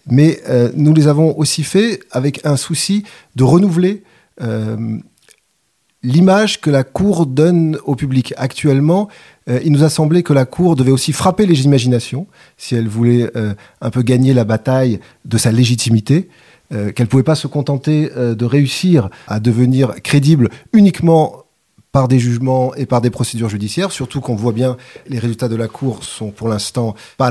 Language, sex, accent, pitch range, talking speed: French, male, French, 125-165 Hz, 180 wpm